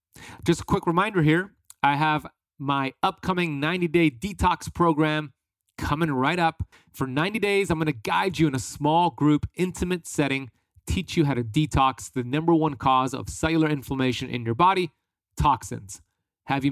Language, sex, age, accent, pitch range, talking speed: English, male, 30-49, American, 120-155 Hz, 165 wpm